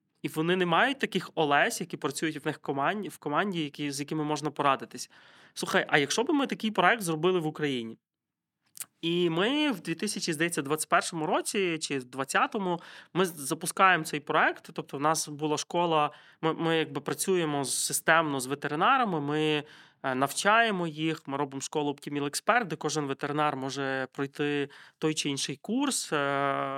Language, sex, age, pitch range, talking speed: Ukrainian, male, 20-39, 140-165 Hz, 155 wpm